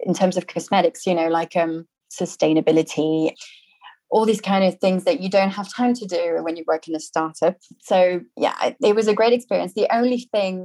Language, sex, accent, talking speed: English, female, British, 210 wpm